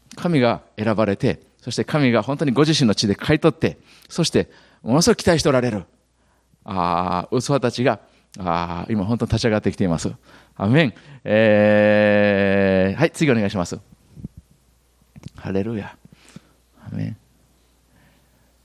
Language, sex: Japanese, male